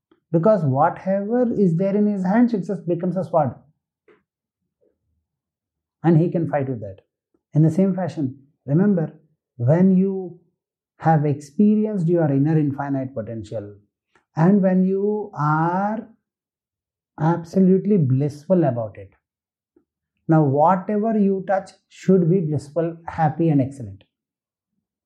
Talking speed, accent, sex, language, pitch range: 115 wpm, Indian, male, English, 155-215 Hz